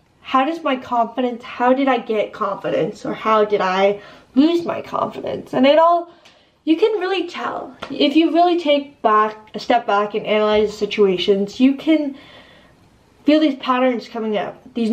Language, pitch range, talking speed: English, 210-285 Hz, 170 wpm